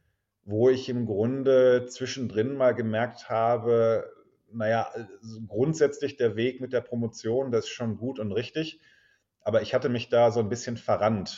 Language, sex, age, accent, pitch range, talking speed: German, male, 30-49, German, 105-120 Hz, 160 wpm